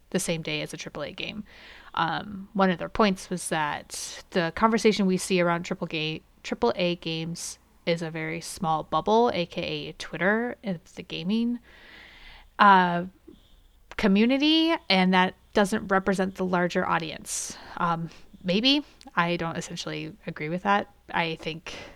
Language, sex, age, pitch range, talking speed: English, female, 30-49, 170-205 Hz, 145 wpm